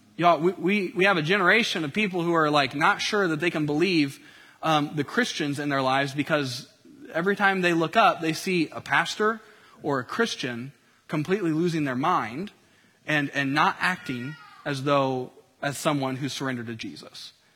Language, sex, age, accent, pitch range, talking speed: English, male, 30-49, American, 145-200 Hz, 180 wpm